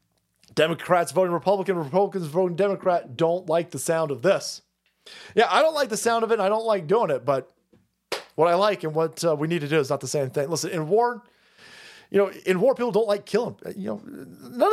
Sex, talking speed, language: male, 230 wpm, English